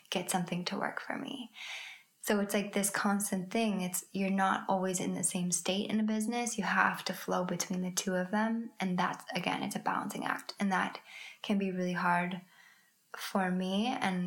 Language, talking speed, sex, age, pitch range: English, 200 wpm, female, 10-29, 185-210 Hz